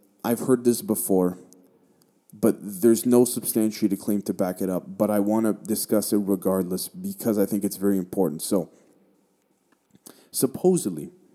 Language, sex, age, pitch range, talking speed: English, male, 30-49, 95-120 Hz, 150 wpm